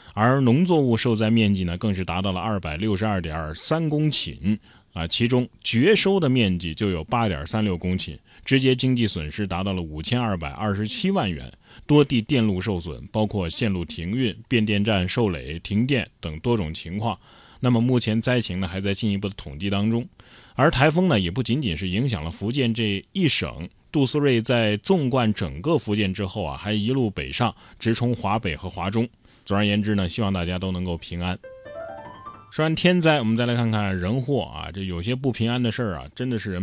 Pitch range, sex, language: 95-130 Hz, male, Chinese